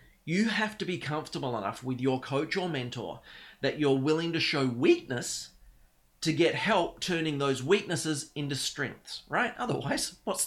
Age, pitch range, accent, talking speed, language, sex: 30-49, 130-180 Hz, Australian, 160 wpm, English, male